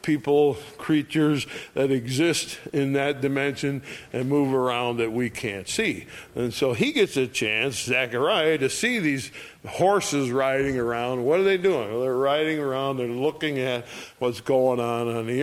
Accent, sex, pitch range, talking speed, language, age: American, male, 120-150 Hz, 165 wpm, English, 60-79